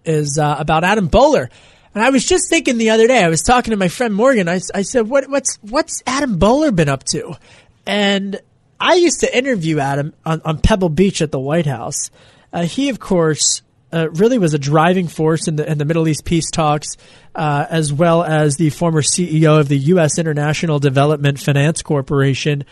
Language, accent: English, American